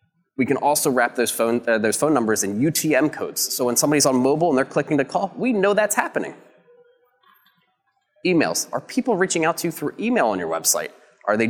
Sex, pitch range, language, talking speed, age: male, 115-155 Hz, English, 215 wpm, 20-39